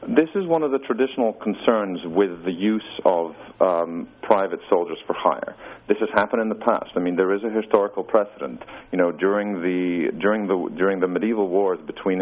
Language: English